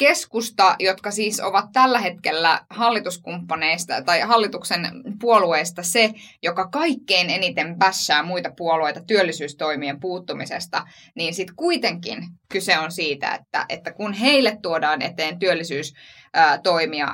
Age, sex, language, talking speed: 20-39, female, Finnish, 115 wpm